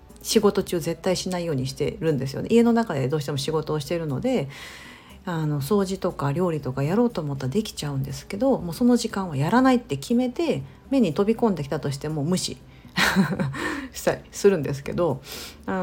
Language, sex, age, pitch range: Japanese, female, 50-69, 145-220 Hz